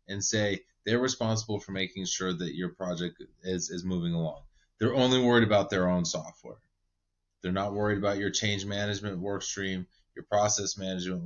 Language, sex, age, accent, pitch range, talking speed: English, male, 20-39, American, 90-110 Hz, 175 wpm